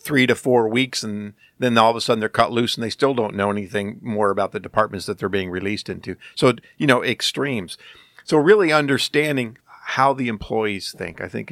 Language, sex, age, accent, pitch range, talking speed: English, male, 50-69, American, 100-125 Hz, 215 wpm